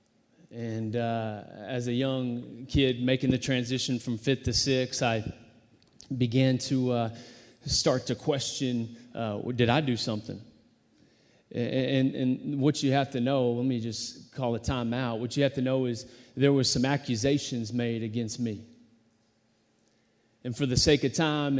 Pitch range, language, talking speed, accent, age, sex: 115-130 Hz, English, 160 wpm, American, 30-49, male